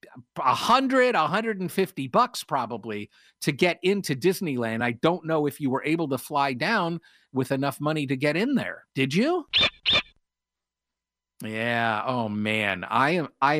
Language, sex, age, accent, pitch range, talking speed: English, male, 50-69, American, 120-190 Hz, 140 wpm